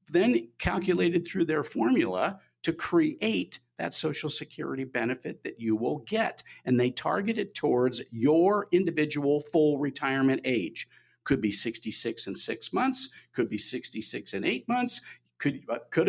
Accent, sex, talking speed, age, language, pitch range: American, male, 145 wpm, 50-69, English, 115-180 Hz